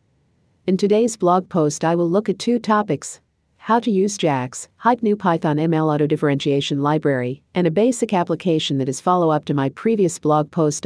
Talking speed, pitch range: 175 wpm, 140-175 Hz